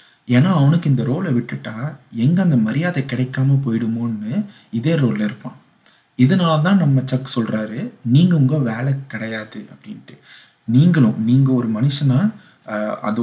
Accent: native